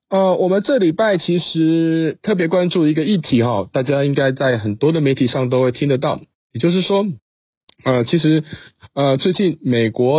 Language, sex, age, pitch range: Chinese, male, 20-39, 125-160 Hz